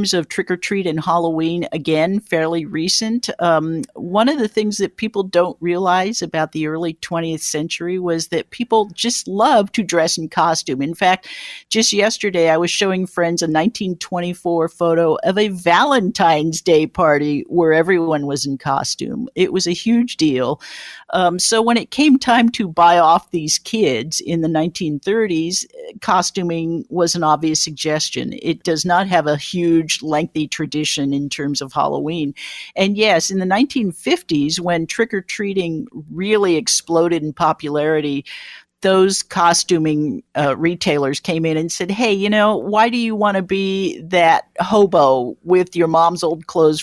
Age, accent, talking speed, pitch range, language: 50-69, American, 155 wpm, 155-195 Hz, English